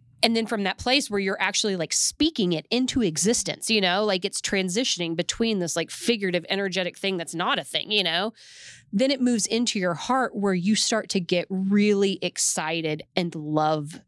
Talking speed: 190 wpm